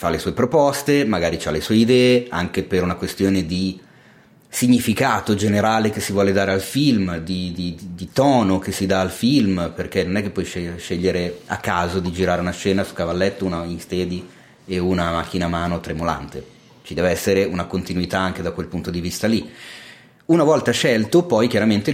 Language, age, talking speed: Italian, 30-49, 195 wpm